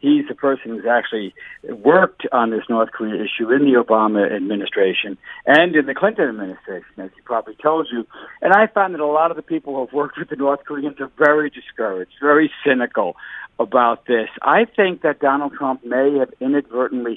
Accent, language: American, English